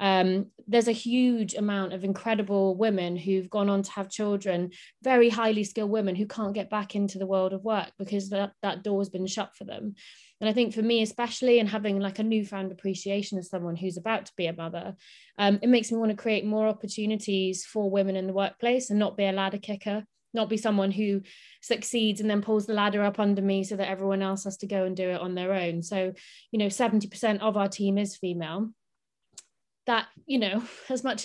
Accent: British